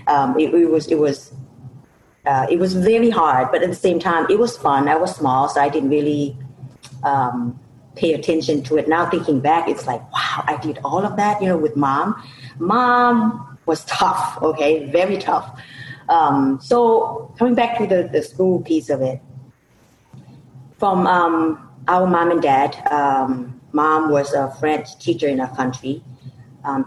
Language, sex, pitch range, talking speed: English, female, 135-170 Hz, 175 wpm